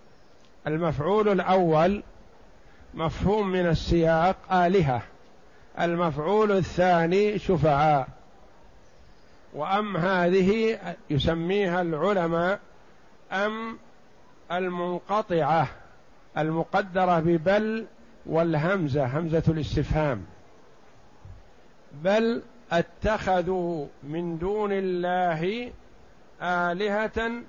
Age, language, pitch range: 50-69, Arabic, 155-190 Hz